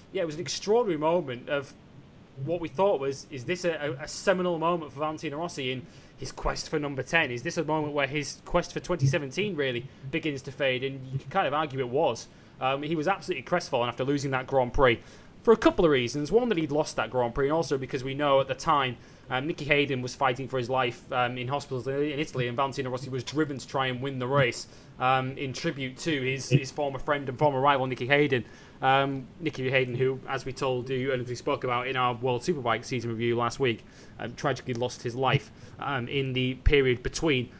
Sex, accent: male, British